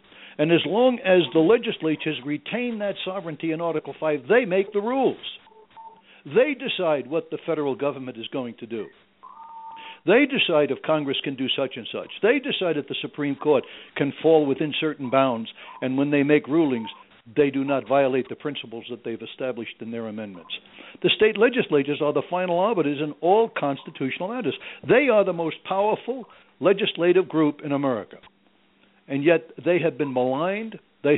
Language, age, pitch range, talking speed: English, 60-79, 140-190 Hz, 175 wpm